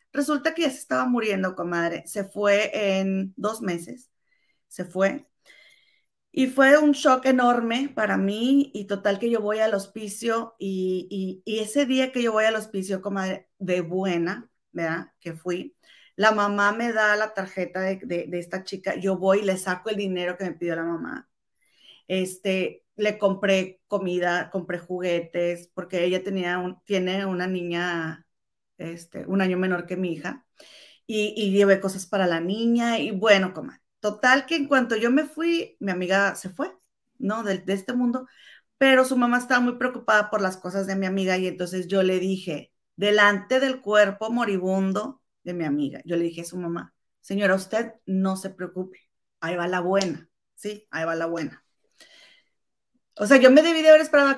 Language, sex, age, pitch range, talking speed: Spanish, female, 30-49, 185-235 Hz, 180 wpm